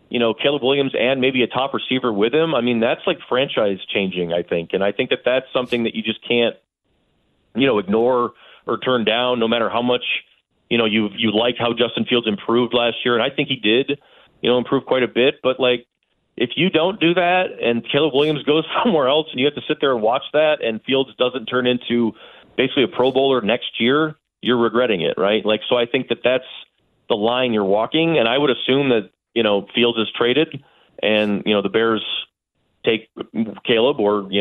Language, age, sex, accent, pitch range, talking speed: English, 30-49, male, American, 110-130 Hz, 220 wpm